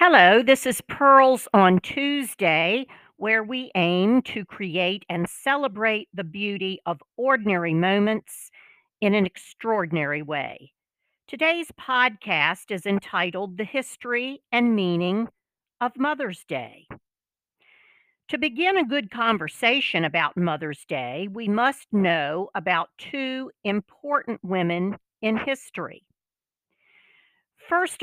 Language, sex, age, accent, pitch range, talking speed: English, female, 50-69, American, 180-265 Hz, 110 wpm